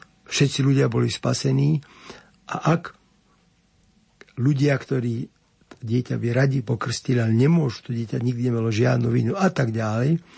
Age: 60-79